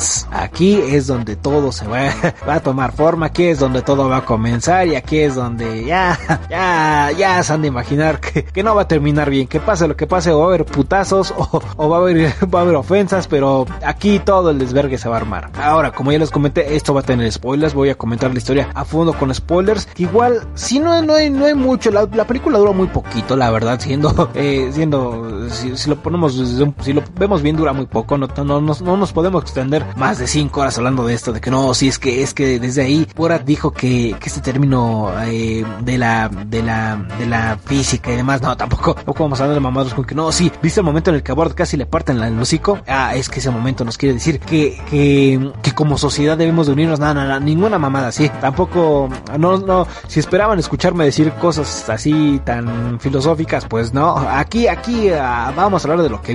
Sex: male